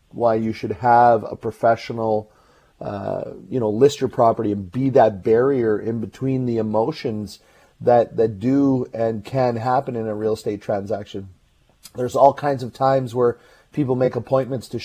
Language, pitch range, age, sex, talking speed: English, 110-125 Hz, 30-49, male, 165 wpm